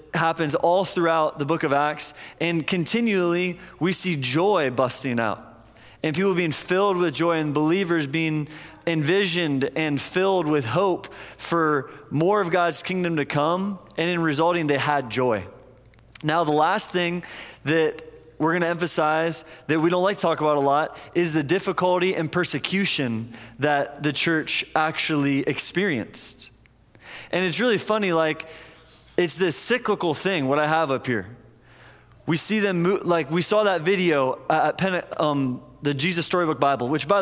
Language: English